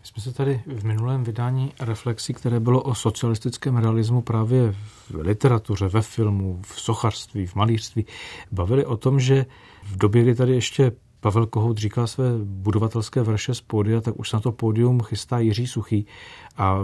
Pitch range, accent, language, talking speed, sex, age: 105-120 Hz, native, Czech, 170 wpm, male, 40-59